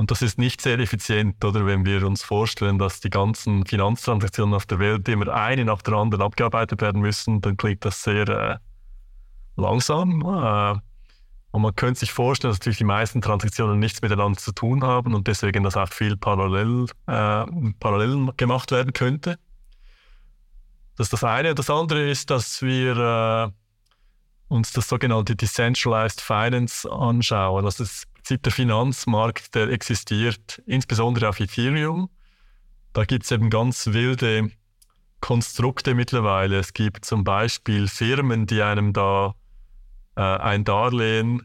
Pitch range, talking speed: 105-125 Hz, 150 wpm